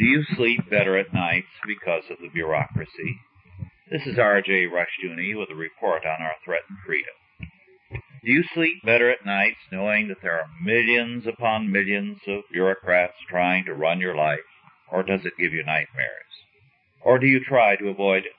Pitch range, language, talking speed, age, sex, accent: 95-120 Hz, English, 175 wpm, 60-79, male, American